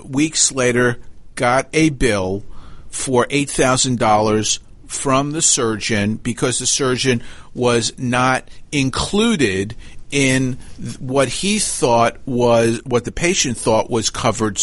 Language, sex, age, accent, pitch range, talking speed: English, male, 50-69, American, 115-145 Hz, 120 wpm